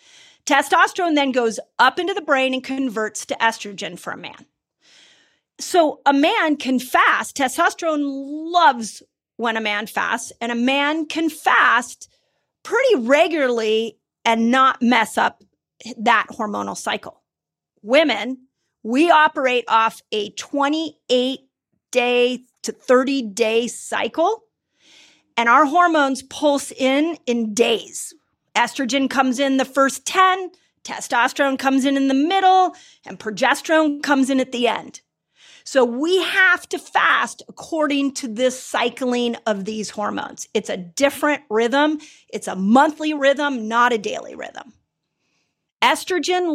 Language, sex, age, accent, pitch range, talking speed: English, female, 40-59, American, 235-310 Hz, 130 wpm